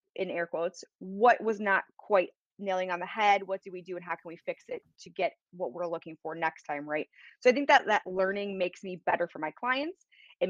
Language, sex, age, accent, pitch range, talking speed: English, female, 20-39, American, 175-250 Hz, 245 wpm